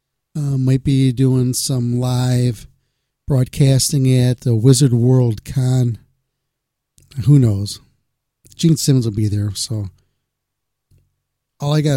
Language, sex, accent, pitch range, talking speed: English, male, American, 115-140 Hz, 115 wpm